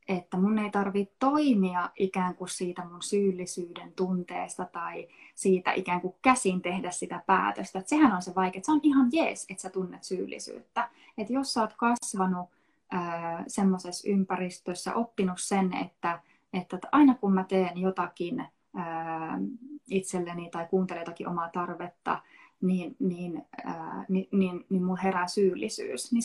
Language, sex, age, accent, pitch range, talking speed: Finnish, female, 20-39, native, 185-235 Hz, 145 wpm